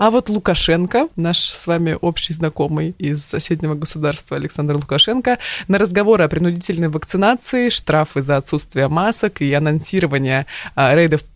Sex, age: female, 20-39